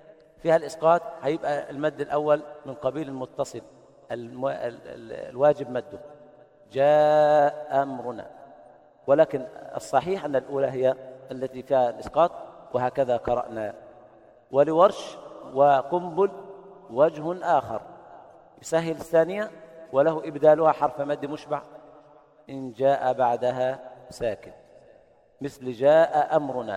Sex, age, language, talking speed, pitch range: male, 50-69, Arabic, 90 wpm, 135-160 Hz